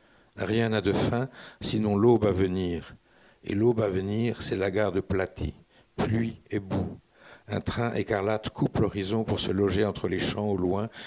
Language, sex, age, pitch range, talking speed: French, male, 60-79, 95-110 Hz, 180 wpm